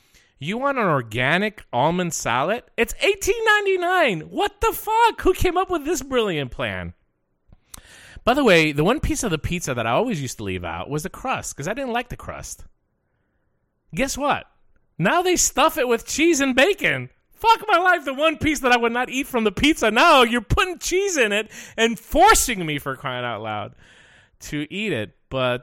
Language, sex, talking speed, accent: English, male, 200 wpm, American